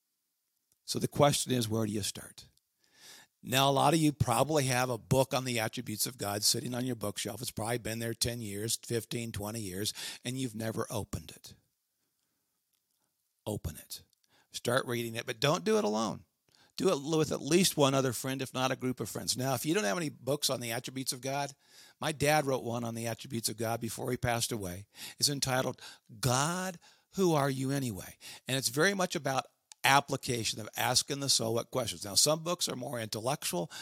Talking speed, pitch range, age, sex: 200 wpm, 110-135 Hz, 50-69, male